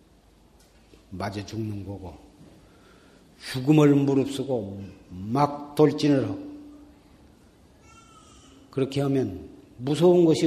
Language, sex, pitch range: Korean, male, 85-140 Hz